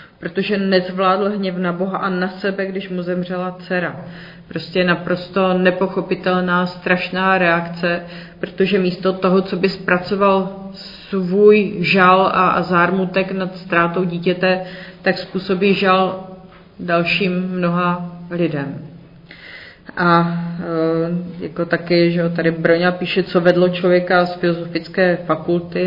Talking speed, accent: 115 wpm, native